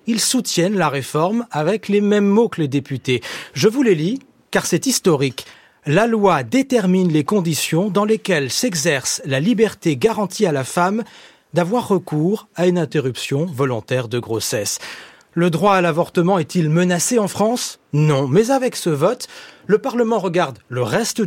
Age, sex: 40-59, male